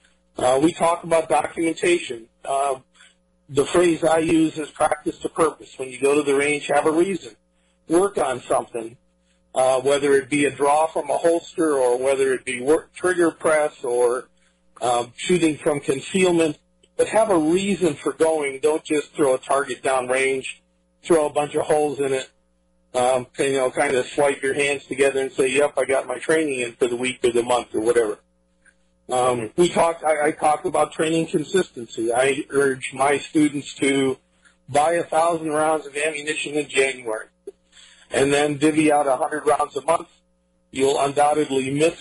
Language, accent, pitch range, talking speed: English, American, 125-160 Hz, 175 wpm